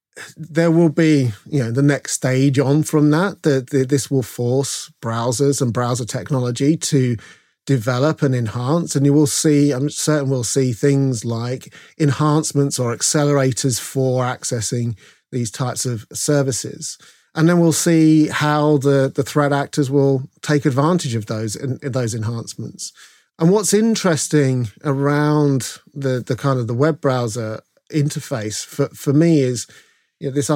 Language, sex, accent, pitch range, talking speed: English, male, British, 125-150 Hz, 155 wpm